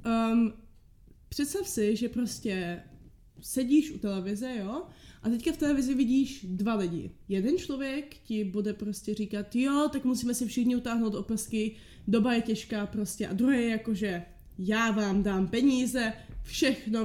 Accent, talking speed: native, 150 wpm